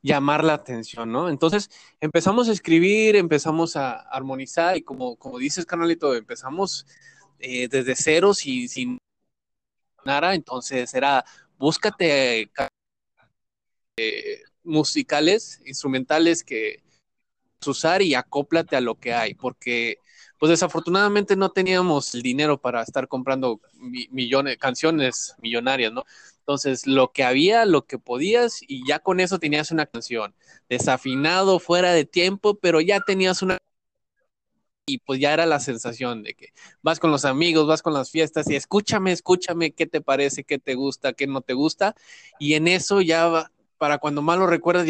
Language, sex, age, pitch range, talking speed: Spanish, male, 20-39, 135-185 Hz, 150 wpm